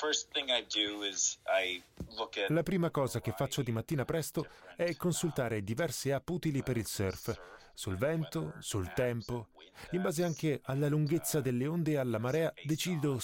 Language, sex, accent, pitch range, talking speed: Italian, male, native, 110-150 Hz, 140 wpm